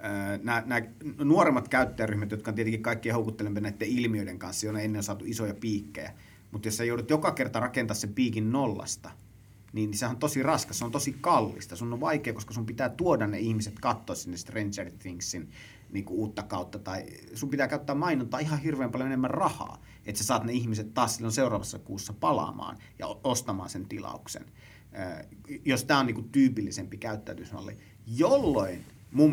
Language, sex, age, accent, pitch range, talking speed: Finnish, male, 30-49, native, 105-135 Hz, 175 wpm